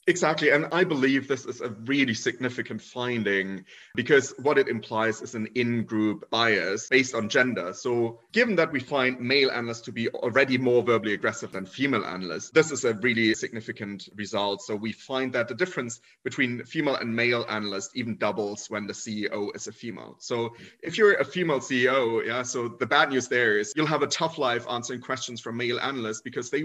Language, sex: English, male